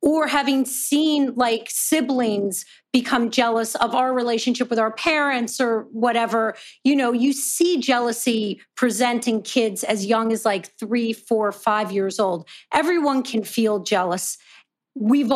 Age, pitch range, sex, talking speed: 40-59, 220-265 Hz, female, 140 wpm